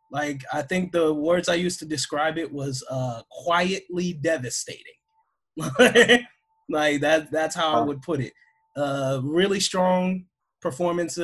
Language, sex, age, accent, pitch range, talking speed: English, male, 20-39, American, 145-185 Hz, 140 wpm